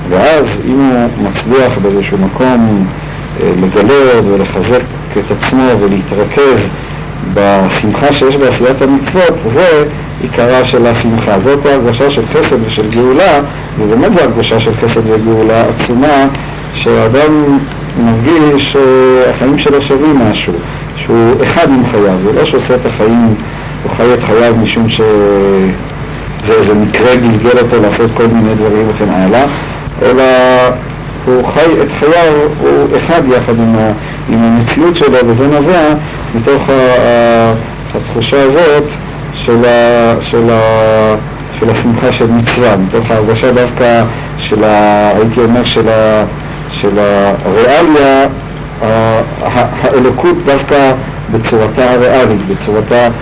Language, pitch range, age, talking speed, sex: Hebrew, 110-140 Hz, 50-69, 120 wpm, male